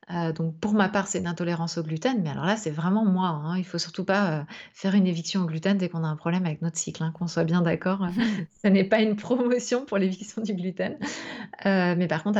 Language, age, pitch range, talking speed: French, 30-49, 165-195 Hz, 260 wpm